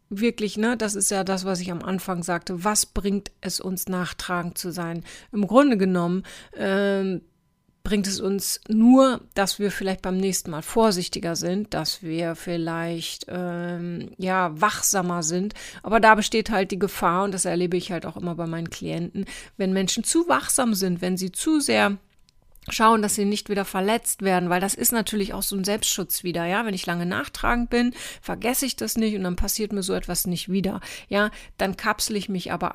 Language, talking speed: German, 195 wpm